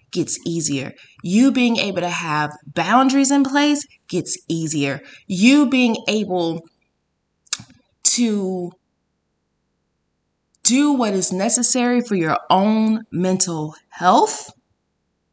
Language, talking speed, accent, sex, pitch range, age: English, 100 wpm, American, female, 170-240 Hz, 20-39